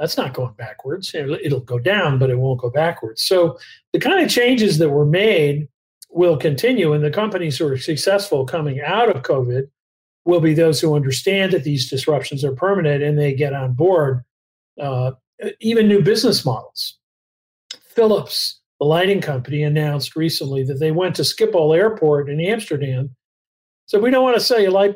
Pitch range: 140-190 Hz